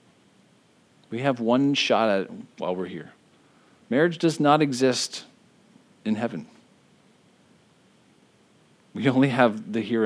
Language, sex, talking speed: English, male, 120 wpm